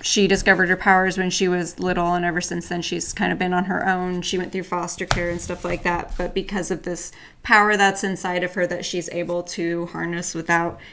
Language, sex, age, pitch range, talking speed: English, female, 20-39, 175-200 Hz, 235 wpm